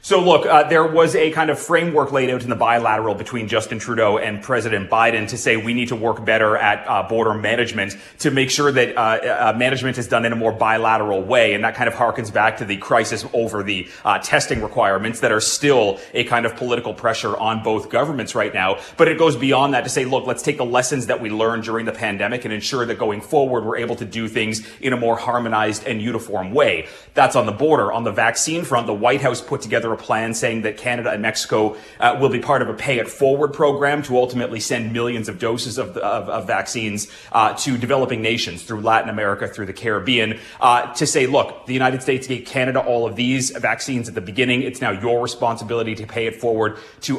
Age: 30-49